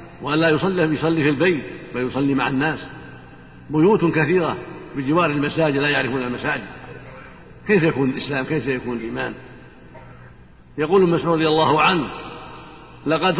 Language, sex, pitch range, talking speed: Arabic, male, 135-170 Hz, 130 wpm